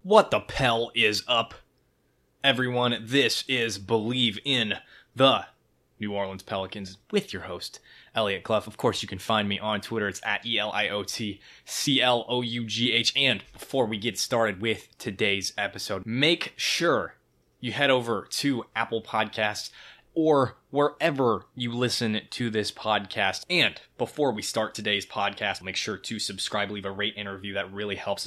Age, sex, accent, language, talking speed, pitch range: 20-39, male, American, English, 150 wpm, 105-130 Hz